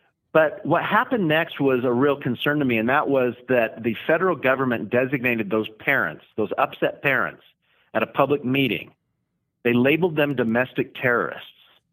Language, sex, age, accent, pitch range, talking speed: English, male, 50-69, American, 115-145 Hz, 160 wpm